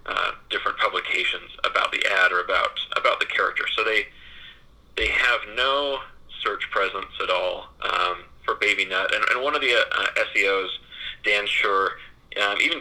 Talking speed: 165 wpm